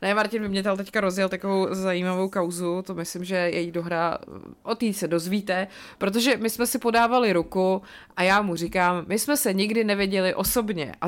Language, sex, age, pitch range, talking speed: Czech, female, 30-49, 170-215 Hz, 190 wpm